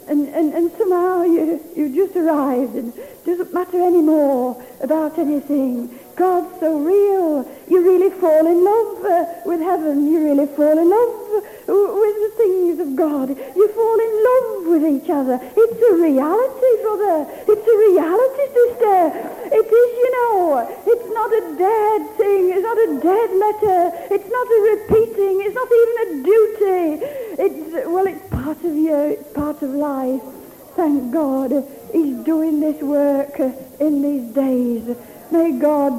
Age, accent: 60-79, British